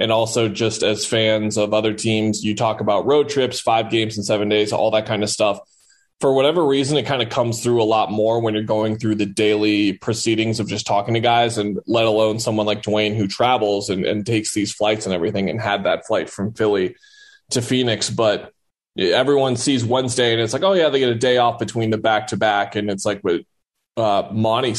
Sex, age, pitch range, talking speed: male, 20-39, 105-120 Hz, 230 wpm